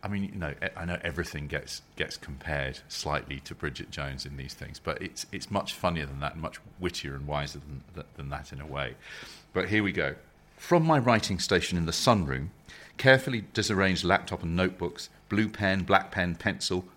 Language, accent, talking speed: English, British, 200 wpm